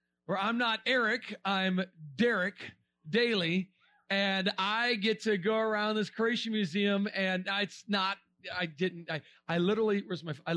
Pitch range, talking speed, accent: 170-225 Hz, 155 wpm, American